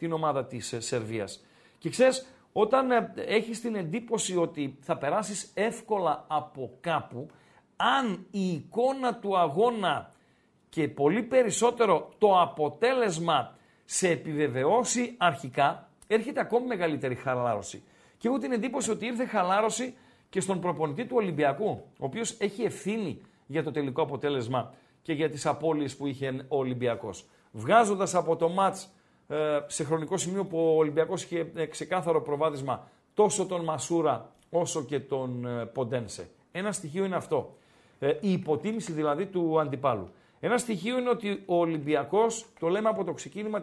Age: 50-69